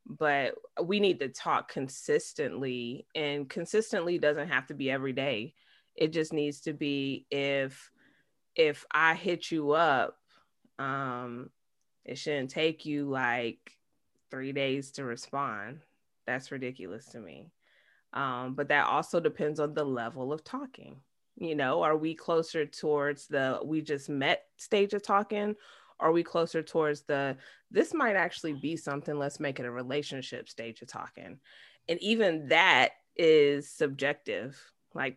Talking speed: 145 wpm